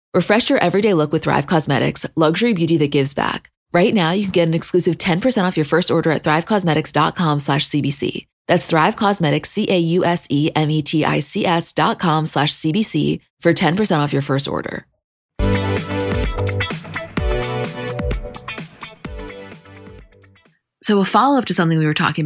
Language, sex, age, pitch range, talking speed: English, female, 20-39, 145-180 Hz, 135 wpm